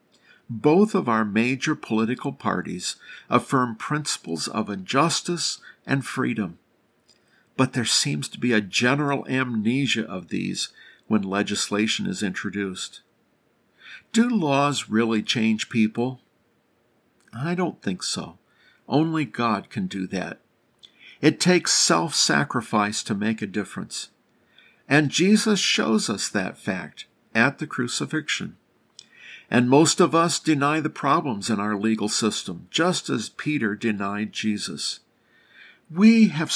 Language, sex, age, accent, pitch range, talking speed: English, male, 50-69, American, 110-150 Hz, 120 wpm